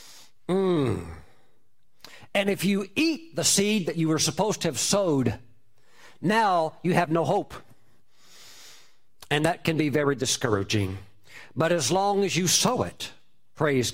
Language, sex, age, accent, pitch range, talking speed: English, male, 50-69, American, 130-170 Hz, 140 wpm